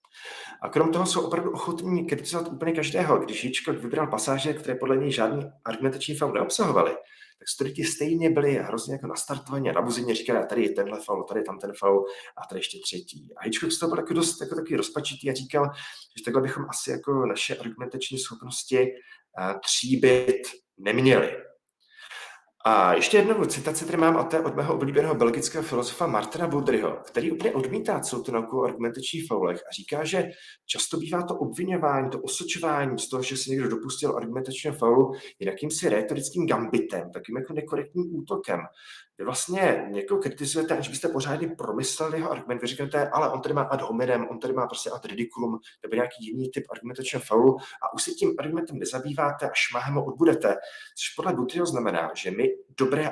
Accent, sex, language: native, male, Czech